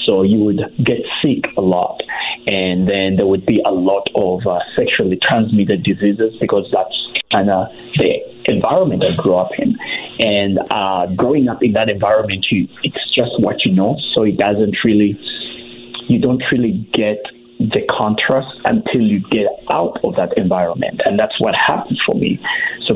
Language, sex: English, male